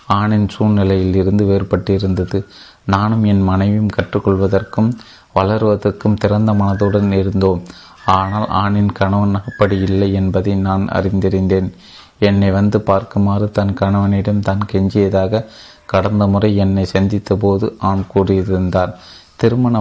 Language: Tamil